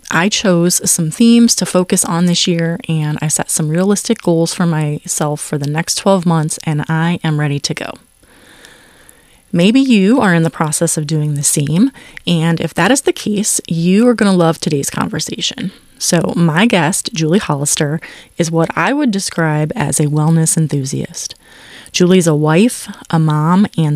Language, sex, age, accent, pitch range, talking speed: English, female, 30-49, American, 155-200 Hz, 180 wpm